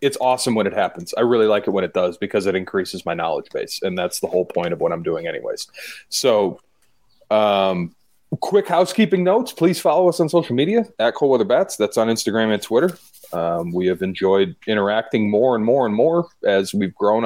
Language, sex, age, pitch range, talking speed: English, male, 30-49, 100-140 Hz, 210 wpm